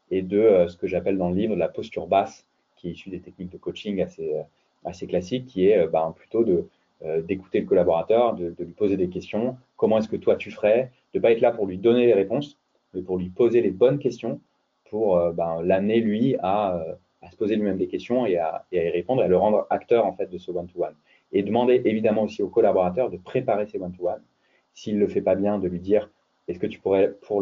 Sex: male